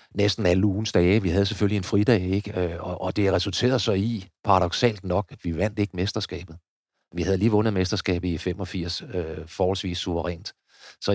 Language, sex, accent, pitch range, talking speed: Danish, male, native, 90-105 Hz, 180 wpm